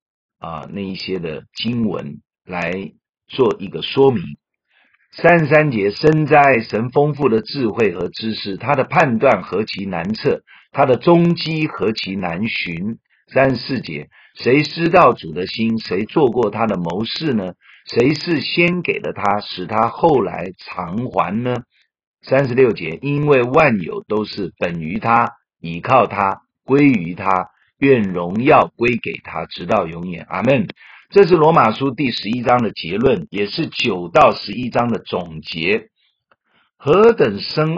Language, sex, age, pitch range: Chinese, male, 50-69, 100-170 Hz